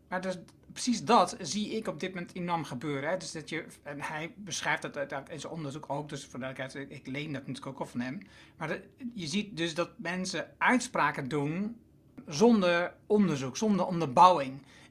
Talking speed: 175 wpm